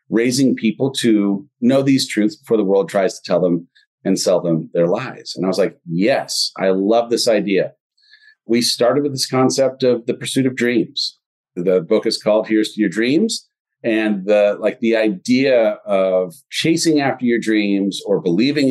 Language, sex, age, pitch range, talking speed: English, male, 40-59, 105-150 Hz, 180 wpm